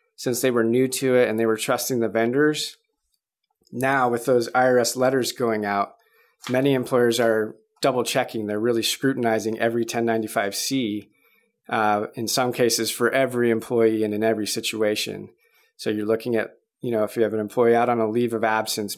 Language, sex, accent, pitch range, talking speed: English, male, American, 110-130 Hz, 180 wpm